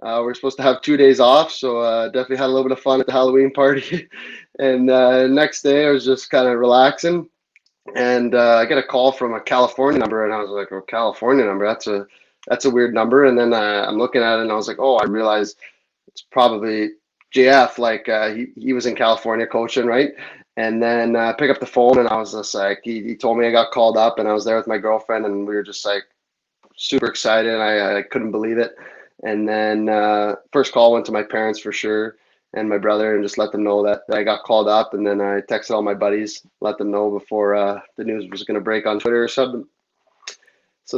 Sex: male